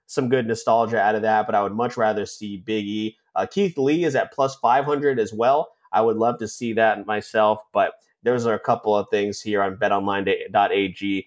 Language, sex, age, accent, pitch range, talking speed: English, male, 30-49, American, 105-135 Hz, 215 wpm